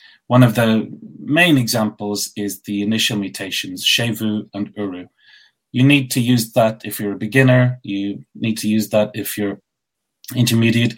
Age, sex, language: 30-49, male, English